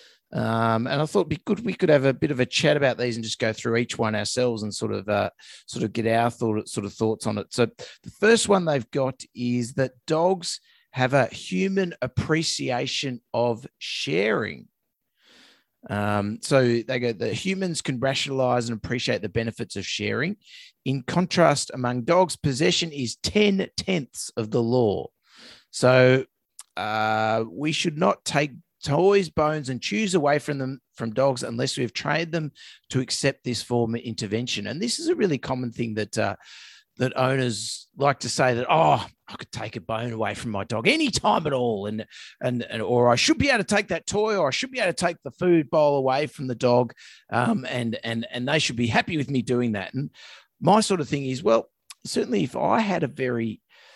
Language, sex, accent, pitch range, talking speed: English, male, Australian, 115-155 Hz, 200 wpm